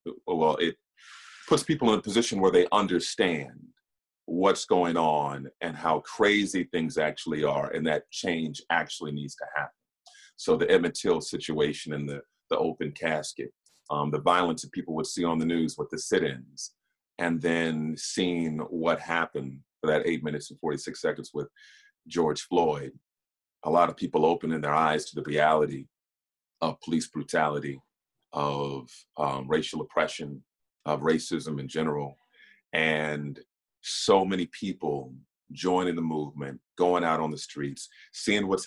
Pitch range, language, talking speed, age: 70-90 Hz, English, 155 wpm, 40-59